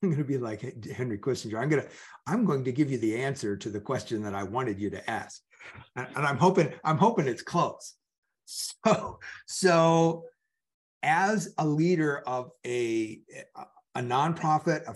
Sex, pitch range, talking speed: male, 130-160 Hz, 175 wpm